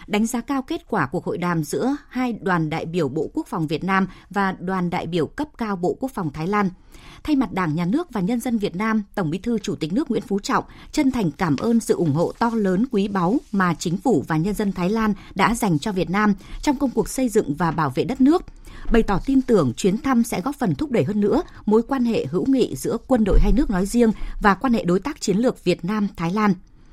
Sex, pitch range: female, 180-240 Hz